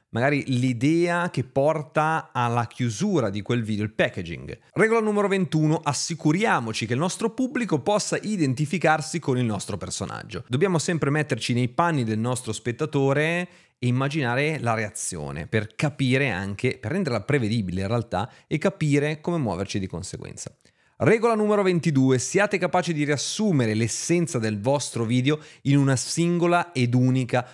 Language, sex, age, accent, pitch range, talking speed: Italian, male, 30-49, native, 115-155 Hz, 145 wpm